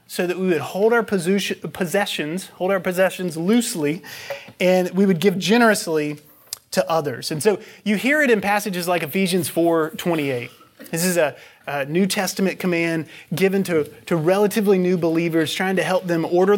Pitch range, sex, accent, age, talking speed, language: 175-220 Hz, male, American, 30-49, 170 wpm, English